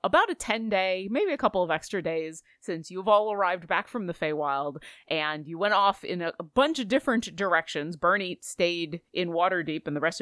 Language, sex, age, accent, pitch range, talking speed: English, female, 30-49, American, 160-225 Hz, 205 wpm